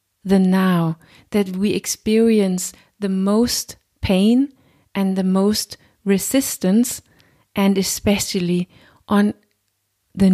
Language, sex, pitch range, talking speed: English, female, 175-215 Hz, 95 wpm